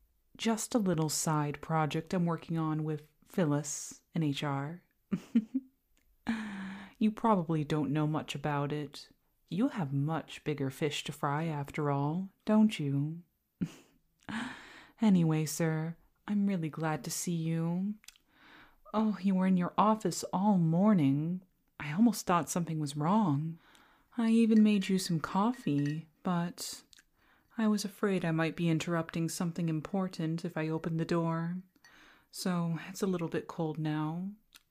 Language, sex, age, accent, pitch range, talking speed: English, female, 30-49, American, 155-205 Hz, 140 wpm